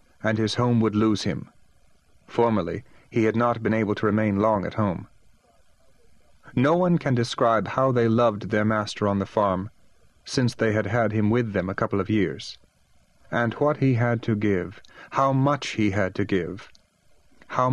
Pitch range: 105-125 Hz